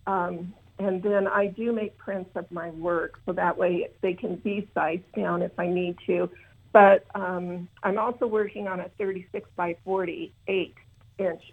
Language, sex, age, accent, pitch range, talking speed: English, female, 50-69, American, 175-210 Hz, 165 wpm